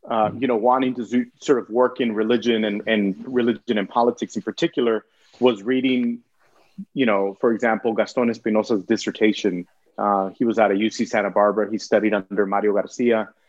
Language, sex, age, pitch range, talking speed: English, male, 30-49, 110-130 Hz, 175 wpm